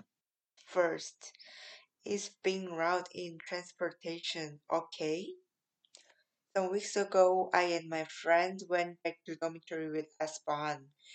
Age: 20-39